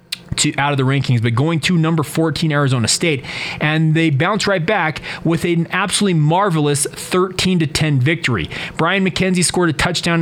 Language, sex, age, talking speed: English, male, 30-49, 175 wpm